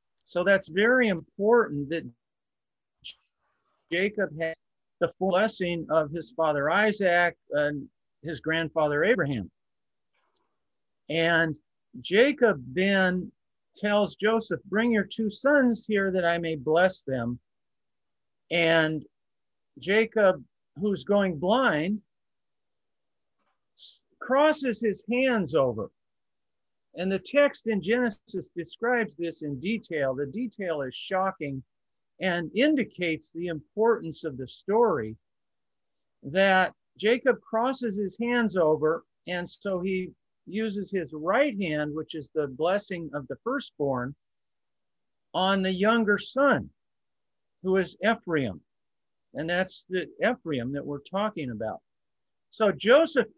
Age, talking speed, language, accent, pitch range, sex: 50-69, 110 wpm, English, American, 155-215 Hz, male